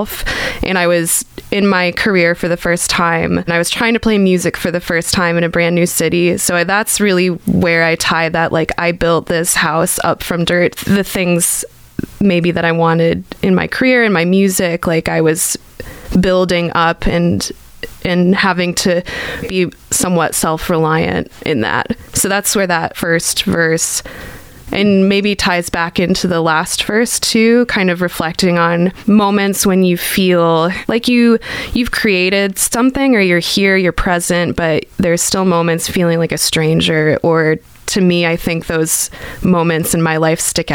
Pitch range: 165-190 Hz